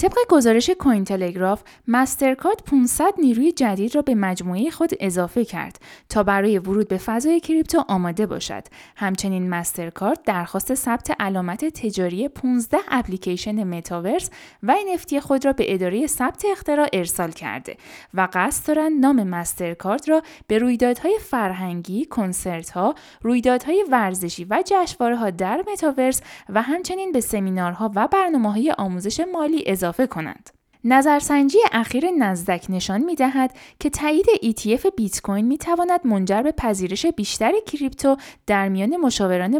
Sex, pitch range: female, 190-290 Hz